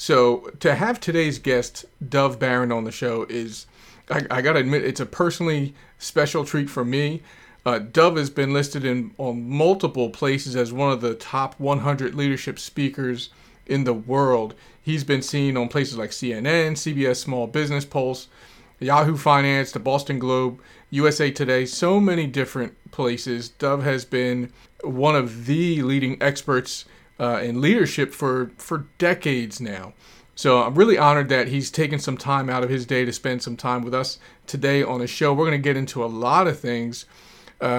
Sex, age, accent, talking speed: male, 40-59, American, 175 wpm